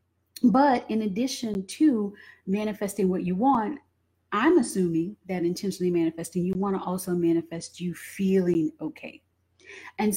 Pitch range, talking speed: 170-210 Hz, 130 wpm